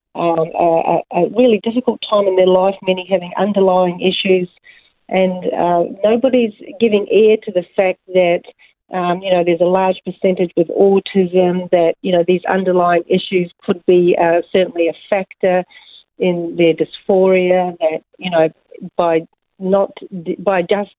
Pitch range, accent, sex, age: 175-215 Hz, Australian, female, 40-59